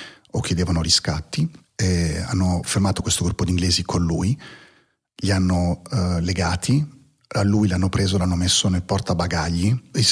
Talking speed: 155 wpm